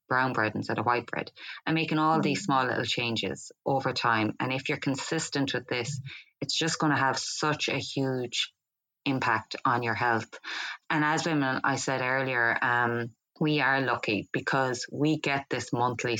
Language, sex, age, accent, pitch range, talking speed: English, female, 20-39, Irish, 115-140 Hz, 180 wpm